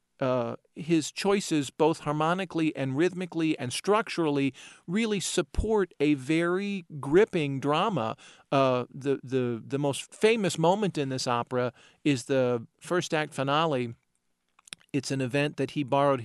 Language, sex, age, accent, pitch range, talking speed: English, male, 40-59, American, 135-180 Hz, 135 wpm